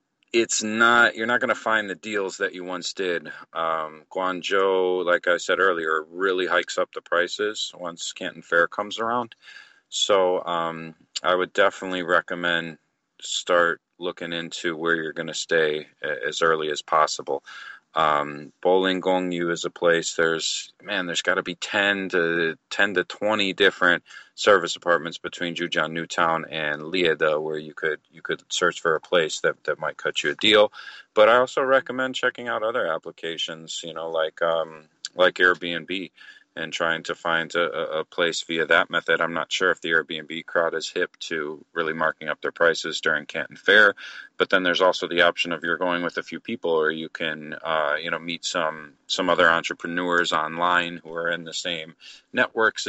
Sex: male